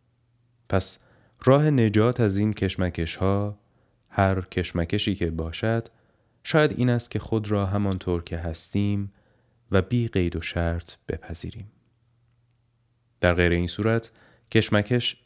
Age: 30-49